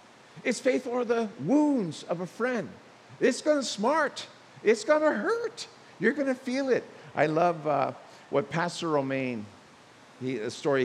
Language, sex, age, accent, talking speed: English, male, 50-69, American, 165 wpm